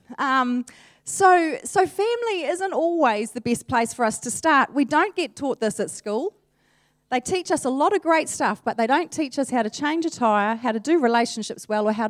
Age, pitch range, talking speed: 30-49, 195-295 Hz, 225 wpm